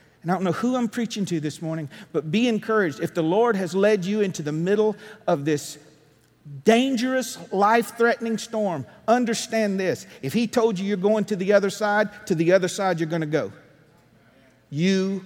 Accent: American